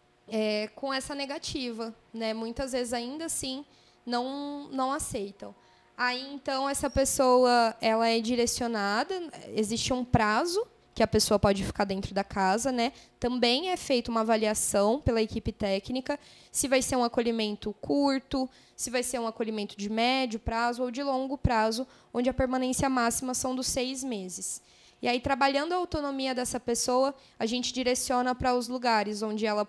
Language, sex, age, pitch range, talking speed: Portuguese, female, 10-29, 225-270 Hz, 160 wpm